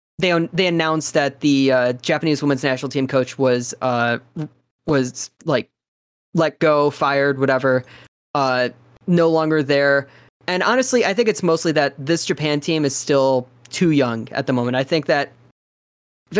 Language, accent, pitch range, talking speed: English, American, 130-160 Hz, 160 wpm